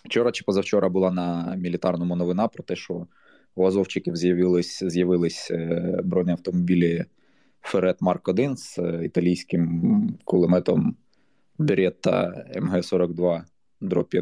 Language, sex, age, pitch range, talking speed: Ukrainian, male, 20-39, 90-100 Hz, 90 wpm